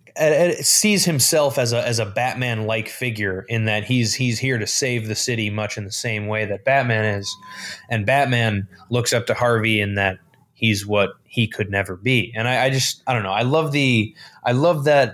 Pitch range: 110-135 Hz